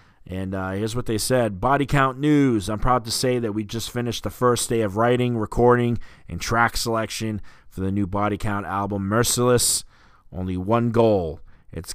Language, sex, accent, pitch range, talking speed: English, male, American, 95-120 Hz, 185 wpm